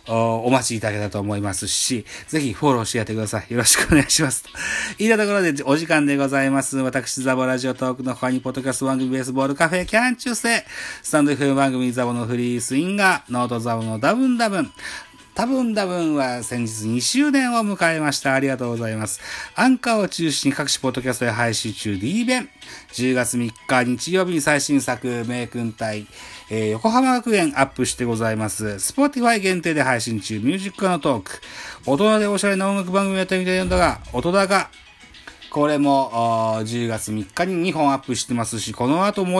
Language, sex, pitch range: Japanese, male, 120-180 Hz